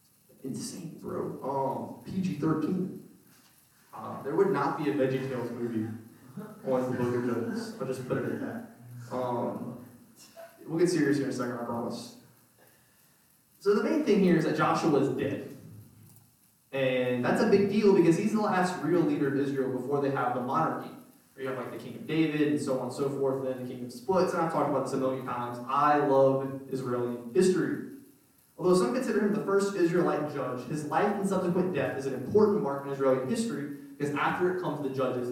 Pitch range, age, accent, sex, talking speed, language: 130-180 Hz, 20-39, American, male, 195 wpm, English